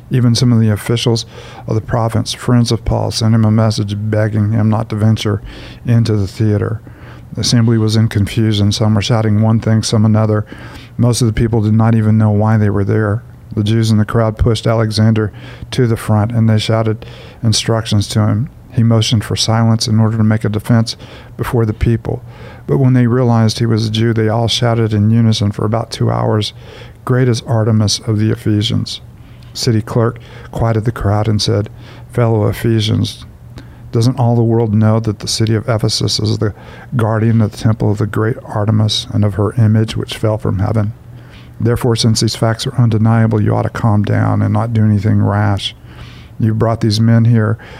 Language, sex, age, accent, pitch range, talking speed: English, male, 50-69, American, 110-115 Hz, 195 wpm